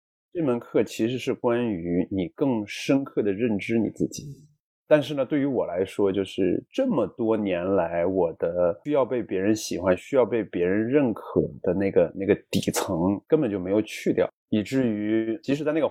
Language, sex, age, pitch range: Chinese, male, 20-39, 100-145 Hz